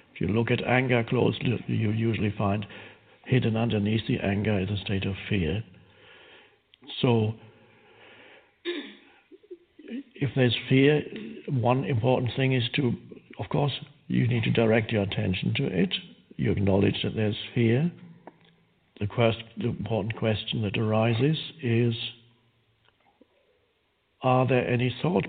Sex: male